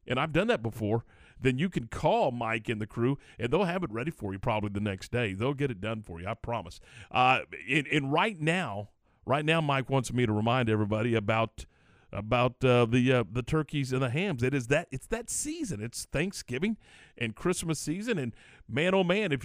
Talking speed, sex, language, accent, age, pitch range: 220 wpm, male, English, American, 50-69, 115-170 Hz